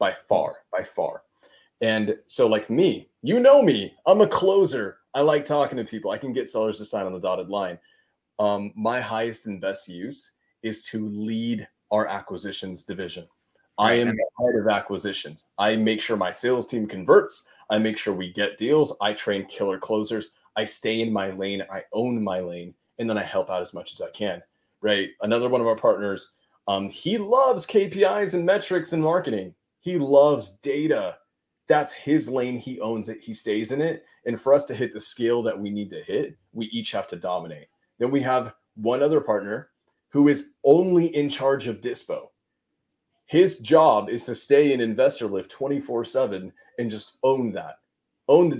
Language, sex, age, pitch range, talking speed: English, male, 30-49, 105-140 Hz, 190 wpm